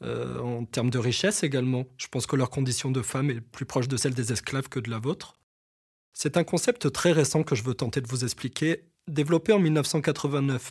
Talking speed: 220 wpm